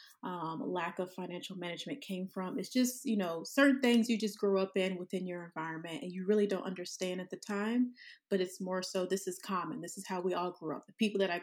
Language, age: English, 30-49